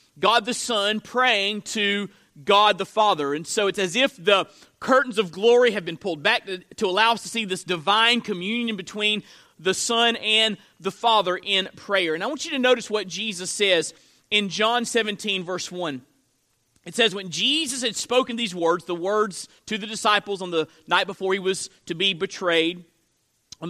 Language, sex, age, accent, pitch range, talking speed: English, male, 40-59, American, 190-250 Hz, 190 wpm